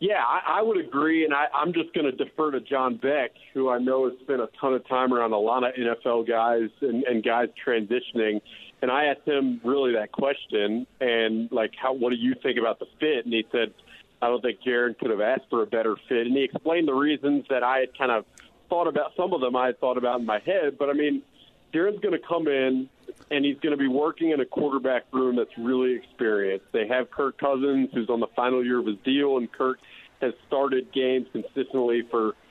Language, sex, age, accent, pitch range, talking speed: English, male, 40-59, American, 120-140 Hz, 235 wpm